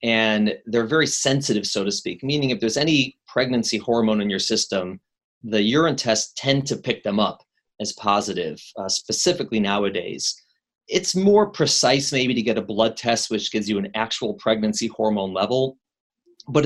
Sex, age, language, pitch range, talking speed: male, 30-49, English, 110-150 Hz, 170 wpm